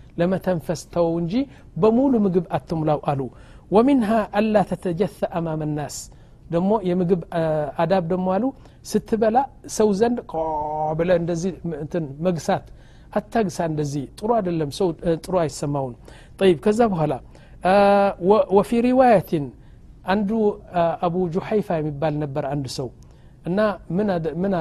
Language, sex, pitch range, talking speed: Amharic, male, 150-190 Hz, 115 wpm